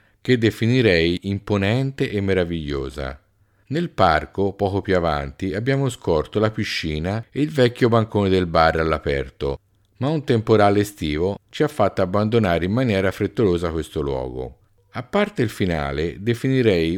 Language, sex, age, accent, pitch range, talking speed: Italian, male, 50-69, native, 85-120 Hz, 140 wpm